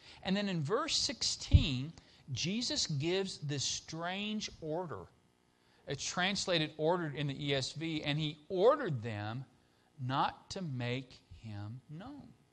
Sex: male